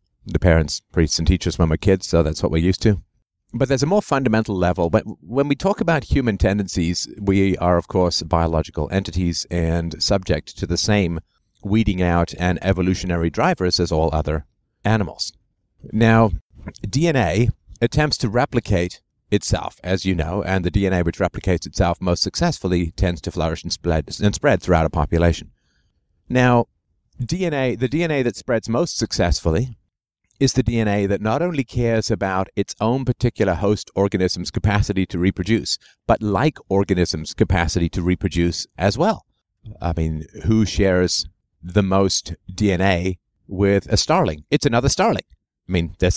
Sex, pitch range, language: male, 85-110 Hz, English